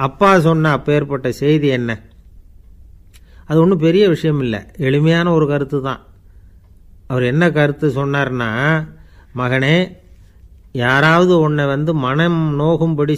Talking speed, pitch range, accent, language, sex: 115 wpm, 115-155 Hz, native, Tamil, male